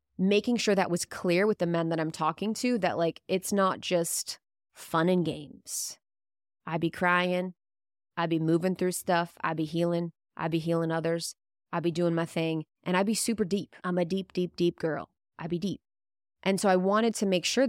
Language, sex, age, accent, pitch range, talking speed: English, female, 20-39, American, 165-195 Hz, 205 wpm